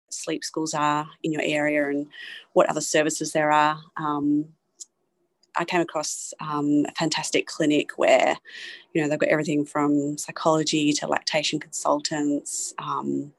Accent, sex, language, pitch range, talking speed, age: Australian, female, English, 150-185 Hz, 145 wpm, 30-49